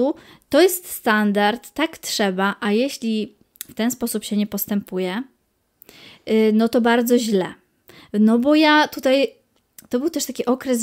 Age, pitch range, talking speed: 20-39, 220-300 Hz, 145 wpm